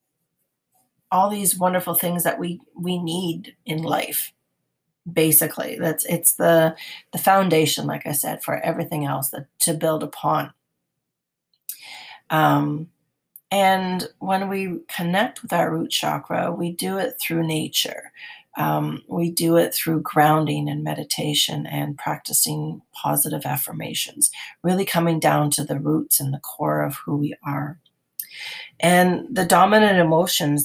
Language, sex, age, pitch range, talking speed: English, female, 40-59, 155-185 Hz, 135 wpm